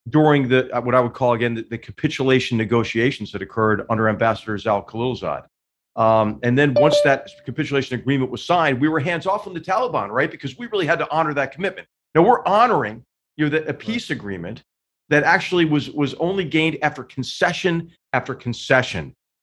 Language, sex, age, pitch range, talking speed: English, male, 40-59, 120-160 Hz, 190 wpm